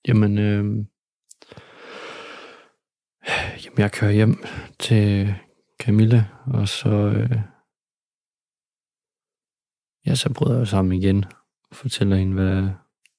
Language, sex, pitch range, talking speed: Danish, male, 95-125 Hz, 95 wpm